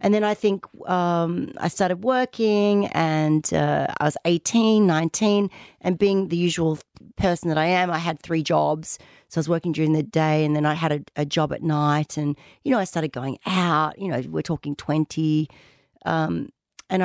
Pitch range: 155-185 Hz